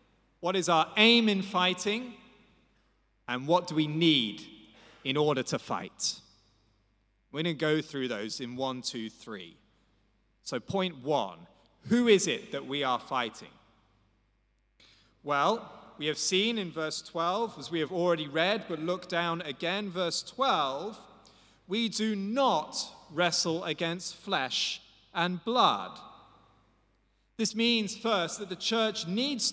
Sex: male